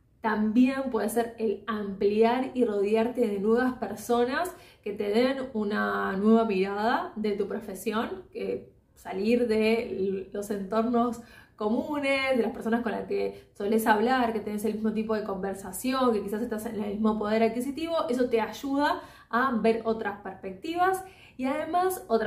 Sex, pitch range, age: female, 210-245 Hz, 20-39